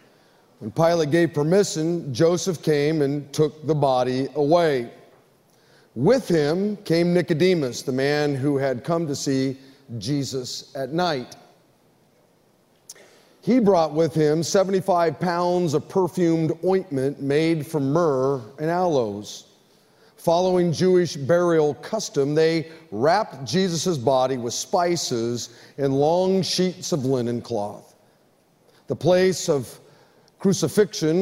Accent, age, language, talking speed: American, 40-59, English, 115 wpm